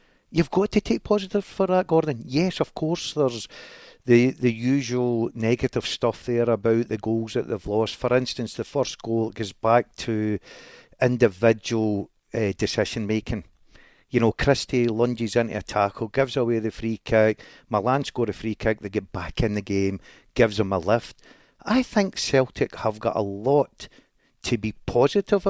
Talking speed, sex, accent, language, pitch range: 170 wpm, male, British, English, 110-135 Hz